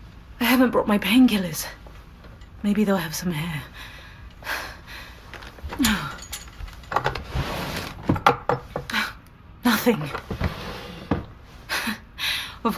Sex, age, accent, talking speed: female, 30-49, British, 55 wpm